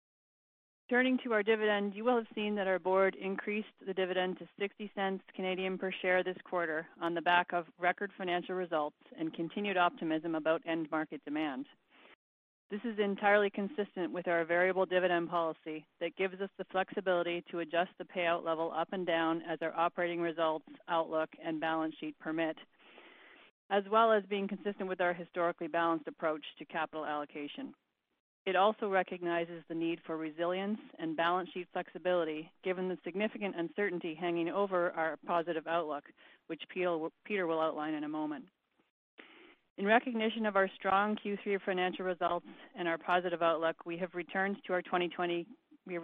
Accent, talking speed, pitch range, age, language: American, 160 wpm, 165-195 Hz, 40-59, English